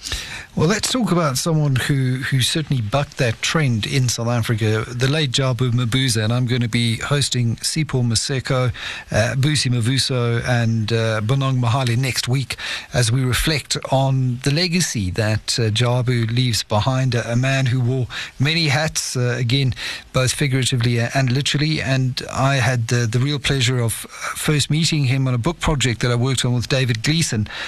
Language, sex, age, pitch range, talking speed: English, male, 50-69, 120-150 Hz, 175 wpm